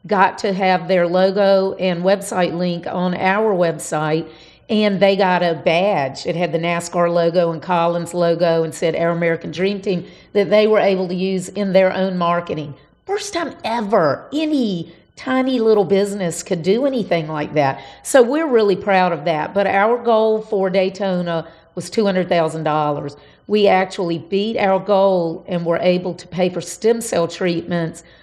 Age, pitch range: 50-69, 170-200 Hz